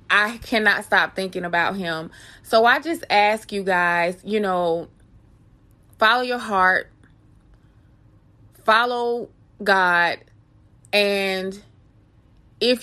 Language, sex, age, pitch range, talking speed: English, female, 20-39, 180-210 Hz, 100 wpm